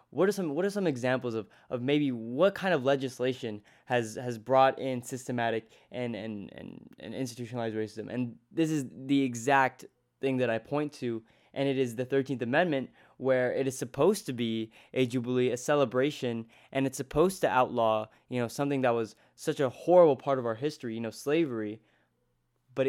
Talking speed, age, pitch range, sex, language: 190 wpm, 20-39, 120-145 Hz, male, English